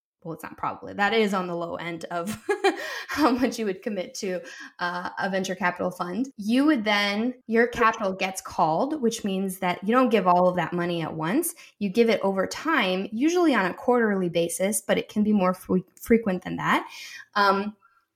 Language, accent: English, American